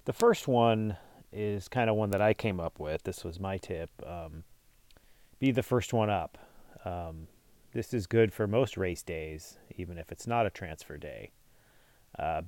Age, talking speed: 30-49, 185 wpm